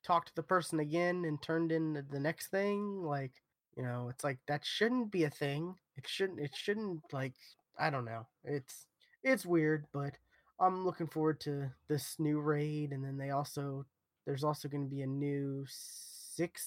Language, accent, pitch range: English, American, 140-175 Hz